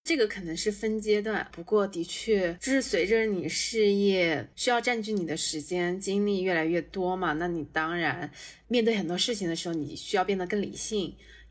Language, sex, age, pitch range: Chinese, female, 20-39, 165-215 Hz